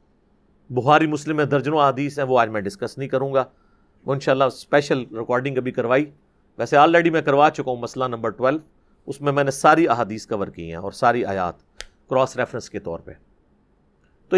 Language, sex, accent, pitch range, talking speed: English, male, Indian, 130-180 Hz, 130 wpm